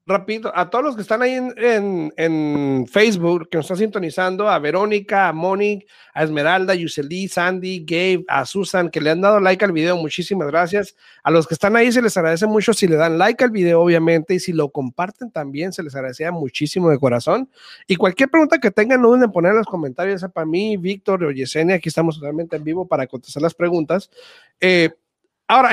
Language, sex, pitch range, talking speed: Spanish, male, 155-205 Hz, 210 wpm